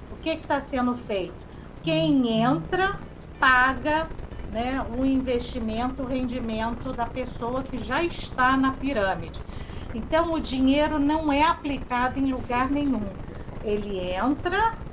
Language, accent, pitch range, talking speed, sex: Portuguese, Brazilian, 235-285 Hz, 125 wpm, female